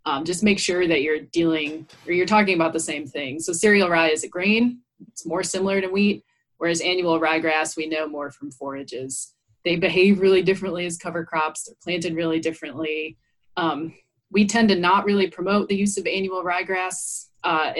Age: 20-39